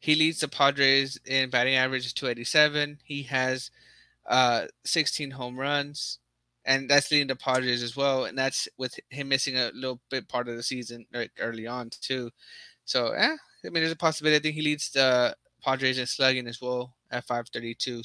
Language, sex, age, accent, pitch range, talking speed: English, male, 20-39, American, 120-135 Hz, 185 wpm